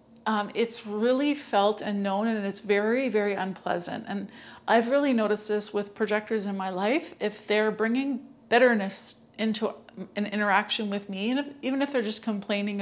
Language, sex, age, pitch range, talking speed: English, female, 40-59, 205-235 Hz, 175 wpm